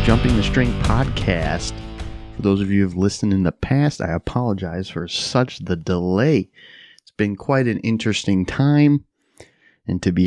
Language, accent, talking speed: English, American, 170 wpm